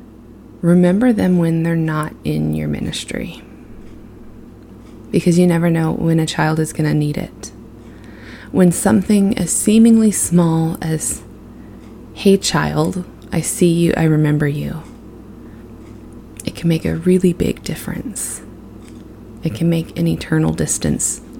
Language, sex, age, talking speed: English, female, 20-39, 130 wpm